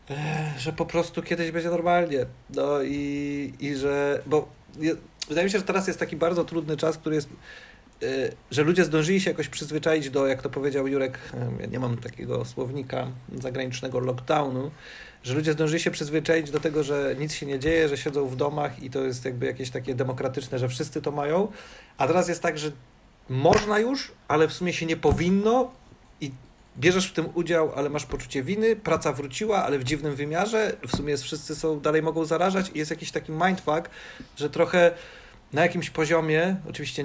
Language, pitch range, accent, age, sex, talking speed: Polish, 140-160 Hz, native, 40-59, male, 185 wpm